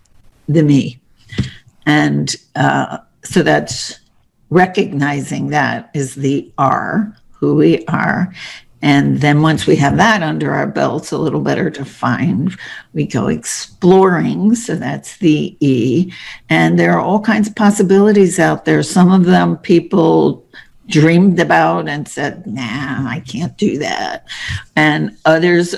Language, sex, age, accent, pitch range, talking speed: English, female, 60-79, American, 140-185 Hz, 135 wpm